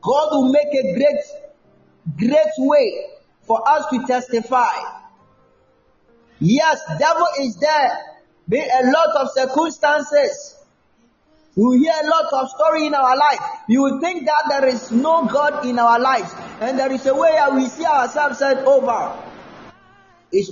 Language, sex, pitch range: Japanese, male, 205-305 Hz